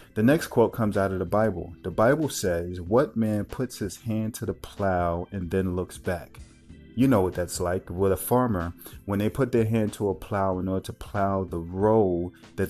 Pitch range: 90-110 Hz